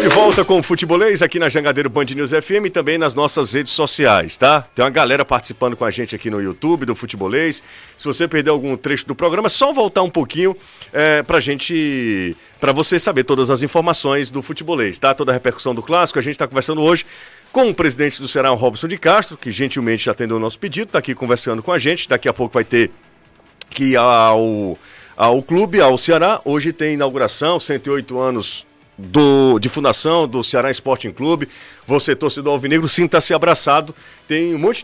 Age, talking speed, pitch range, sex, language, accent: 40-59, 205 wpm, 130-165 Hz, male, Portuguese, Brazilian